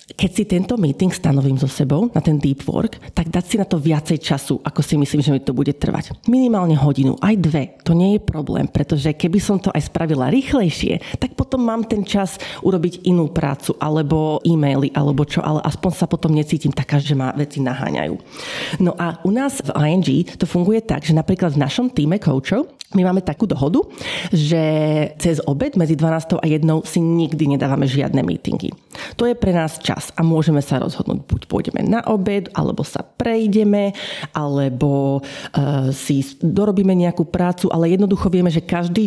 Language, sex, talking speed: Slovak, female, 185 wpm